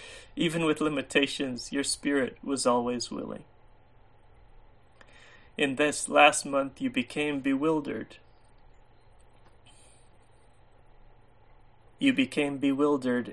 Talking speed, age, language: 80 wpm, 30-49, English